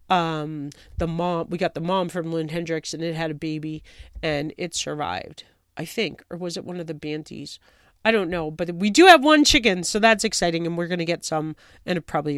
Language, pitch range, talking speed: English, 155-195 Hz, 230 wpm